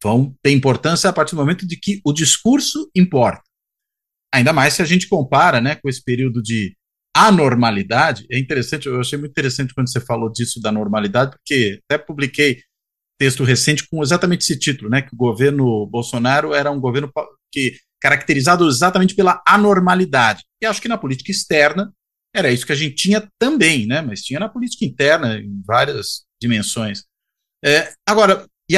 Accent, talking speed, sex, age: Brazilian, 170 wpm, male, 50-69